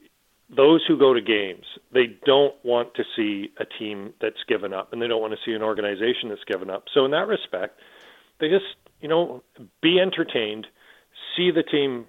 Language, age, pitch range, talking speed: English, 40-59, 120-175 Hz, 195 wpm